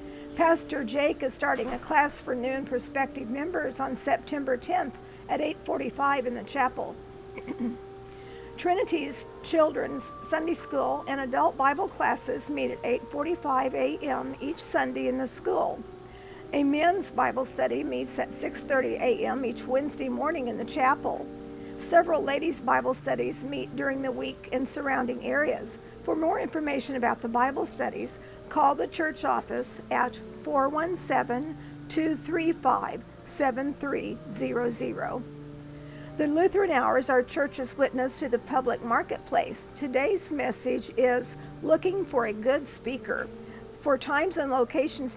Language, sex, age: English, female, 50-69